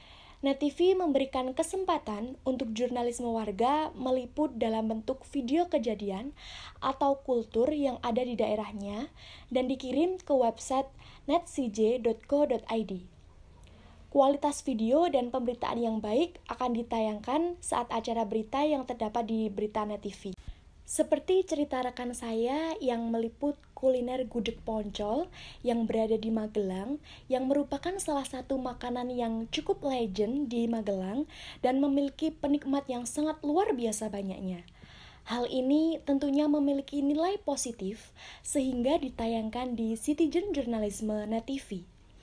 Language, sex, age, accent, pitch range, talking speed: Indonesian, female, 20-39, native, 225-285 Hz, 115 wpm